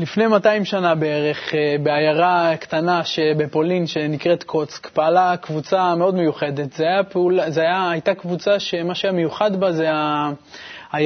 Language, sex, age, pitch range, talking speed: Hebrew, male, 20-39, 155-195 Hz, 120 wpm